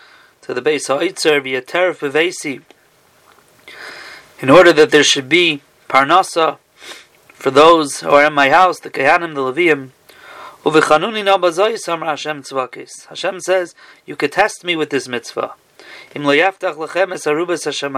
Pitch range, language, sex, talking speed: 145-180 Hz, English, male, 95 wpm